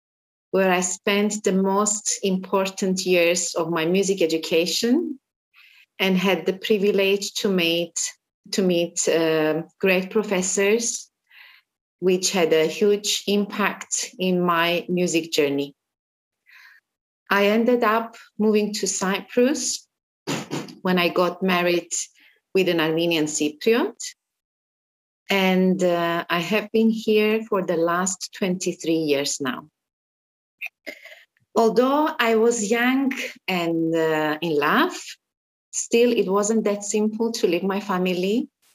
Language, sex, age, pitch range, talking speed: English, female, 30-49, 170-215 Hz, 115 wpm